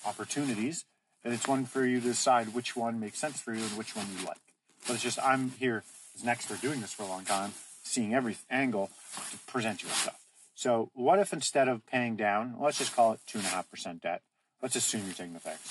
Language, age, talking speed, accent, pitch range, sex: English, 40-59, 235 wpm, American, 95-125 Hz, male